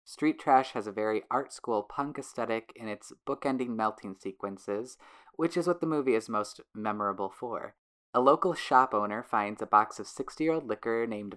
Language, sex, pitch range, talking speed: English, female, 110-145 Hz, 175 wpm